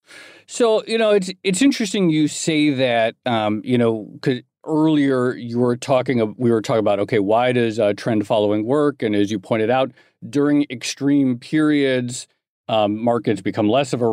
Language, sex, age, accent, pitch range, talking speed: English, male, 40-59, American, 115-145 Hz, 180 wpm